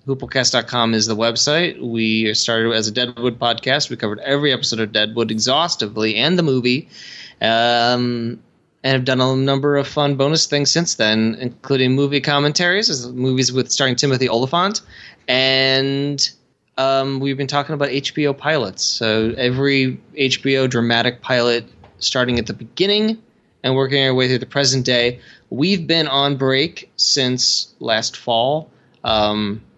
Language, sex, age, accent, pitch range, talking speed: English, male, 20-39, American, 120-145 Hz, 150 wpm